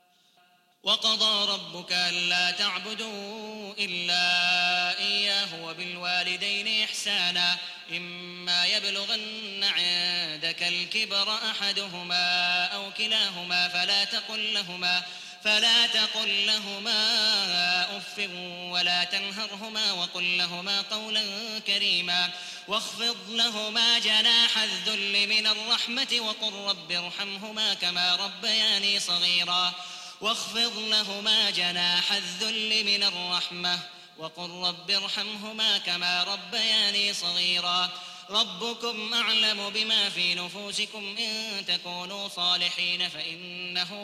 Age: 20-39